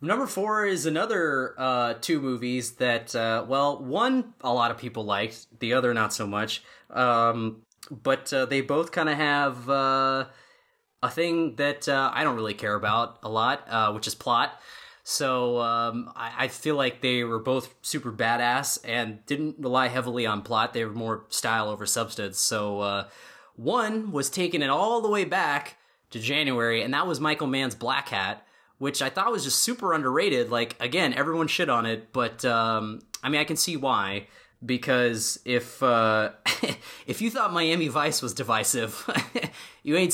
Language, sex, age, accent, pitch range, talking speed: English, male, 20-39, American, 110-140 Hz, 180 wpm